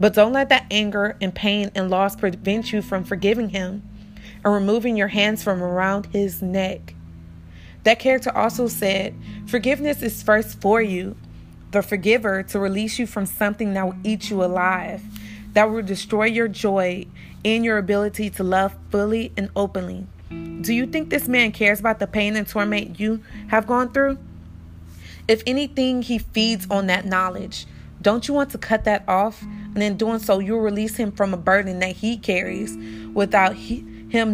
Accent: American